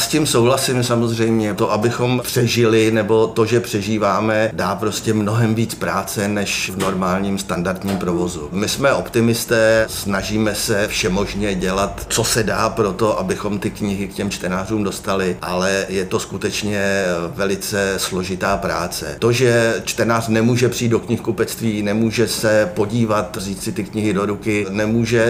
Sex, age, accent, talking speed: male, 50-69, native, 150 wpm